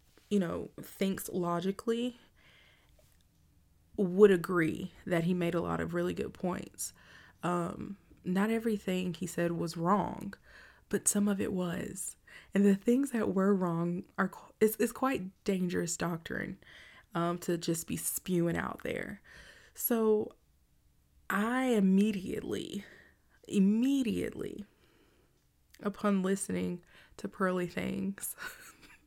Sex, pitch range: female, 175-210 Hz